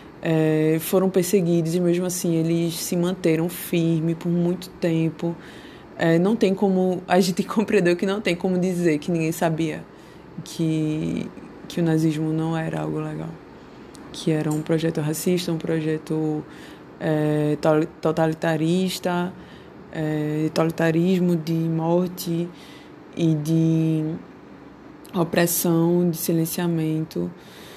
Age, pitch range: 20-39, 160-180 Hz